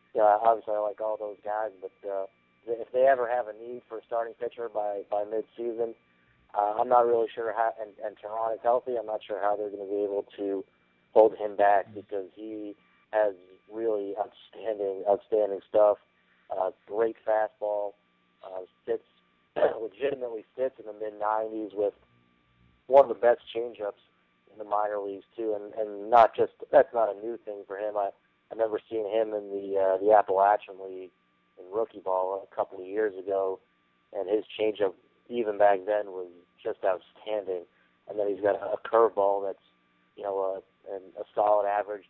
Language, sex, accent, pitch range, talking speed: English, male, American, 95-110 Hz, 180 wpm